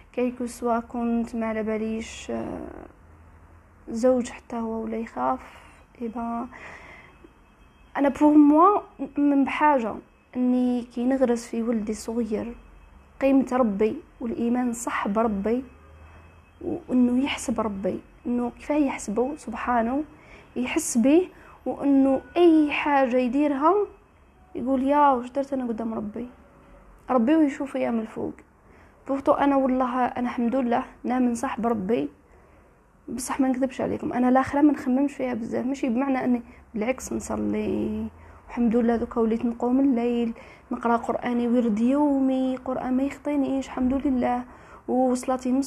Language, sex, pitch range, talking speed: Arabic, female, 235-275 Hz, 120 wpm